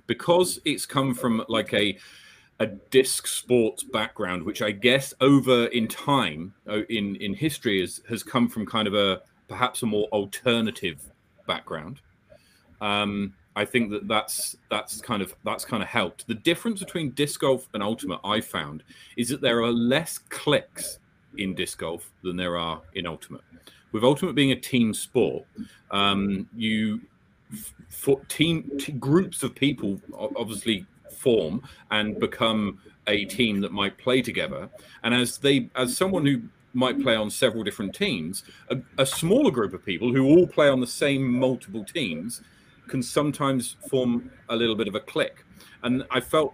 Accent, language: British, English